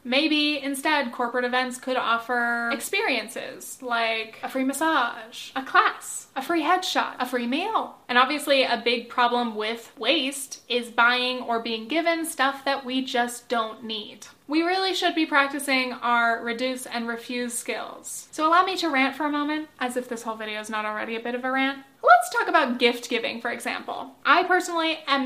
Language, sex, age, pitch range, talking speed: English, female, 10-29, 240-285 Hz, 185 wpm